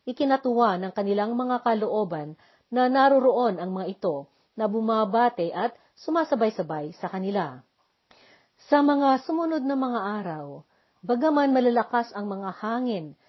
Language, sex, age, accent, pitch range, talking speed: Filipino, female, 50-69, native, 180-245 Hz, 120 wpm